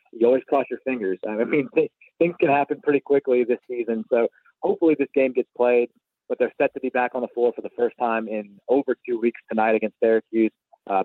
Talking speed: 225 wpm